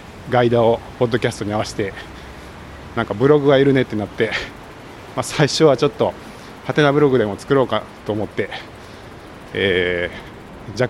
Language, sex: Japanese, male